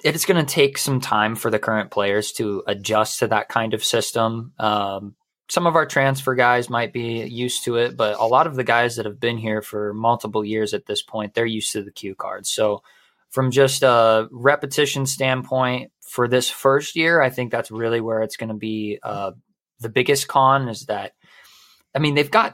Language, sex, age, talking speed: English, male, 20-39, 210 wpm